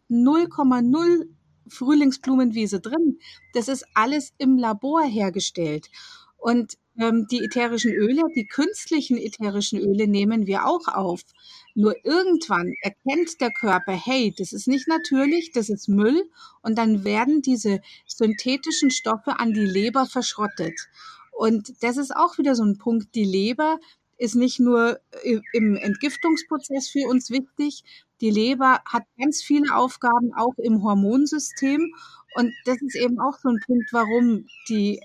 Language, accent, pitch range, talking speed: German, German, 215-280 Hz, 140 wpm